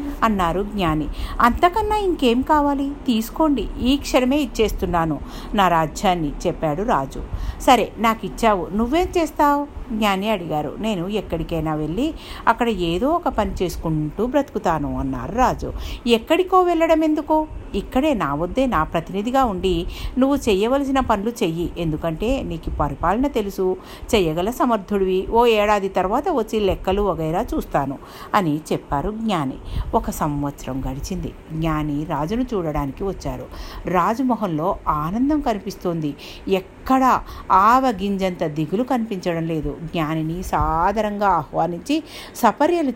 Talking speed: 110 wpm